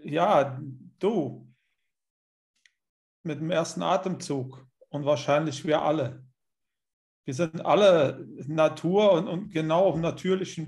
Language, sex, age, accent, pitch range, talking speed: German, male, 40-59, German, 140-170 Hz, 105 wpm